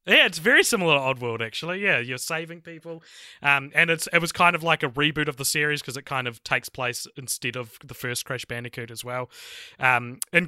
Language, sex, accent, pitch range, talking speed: English, male, Australian, 130-155 Hz, 235 wpm